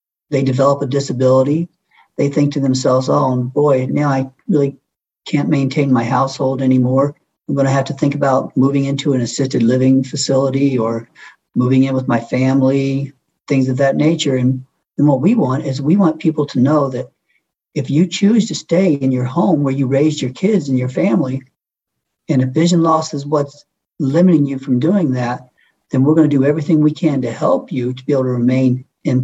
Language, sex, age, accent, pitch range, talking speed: English, male, 50-69, American, 130-150 Hz, 195 wpm